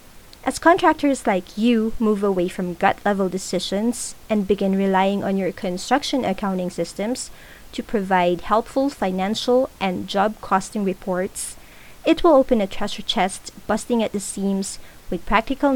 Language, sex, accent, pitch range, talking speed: English, female, Filipino, 195-240 Hz, 140 wpm